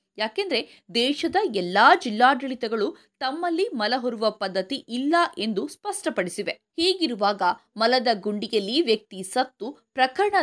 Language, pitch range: Kannada, 215-320 Hz